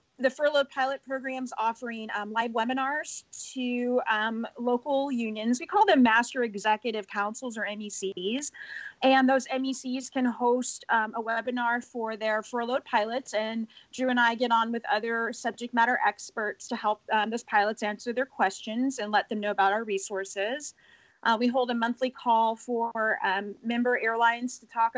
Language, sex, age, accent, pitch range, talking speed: English, female, 30-49, American, 220-265 Hz, 170 wpm